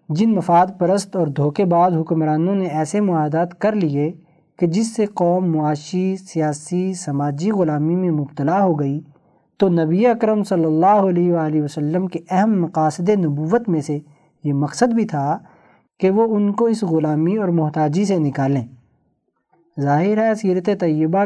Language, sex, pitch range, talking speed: Urdu, male, 155-190 Hz, 160 wpm